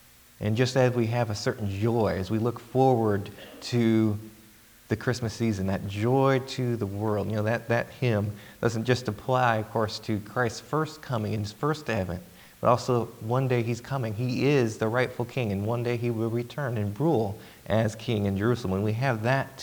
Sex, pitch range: male, 105-120 Hz